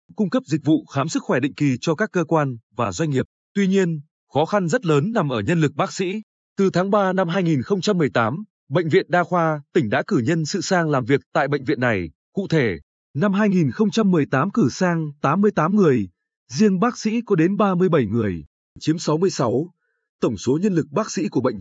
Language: Vietnamese